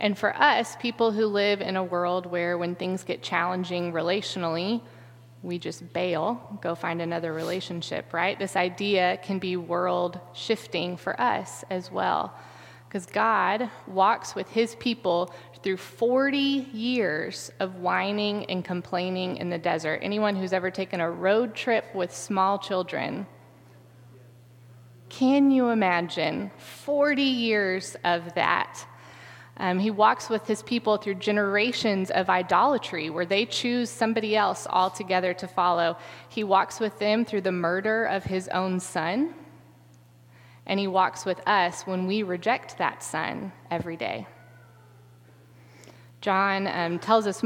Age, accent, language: 20-39, American, English